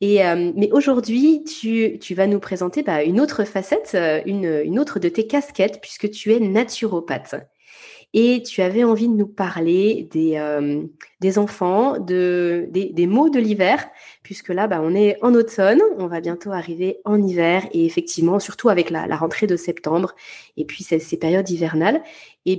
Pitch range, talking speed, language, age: 175-220 Hz, 180 wpm, French, 20-39